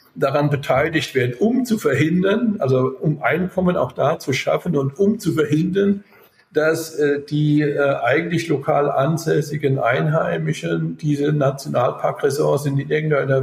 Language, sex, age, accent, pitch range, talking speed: English, male, 60-79, German, 130-155 Hz, 130 wpm